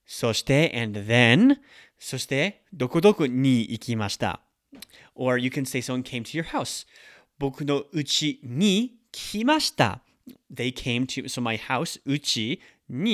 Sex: male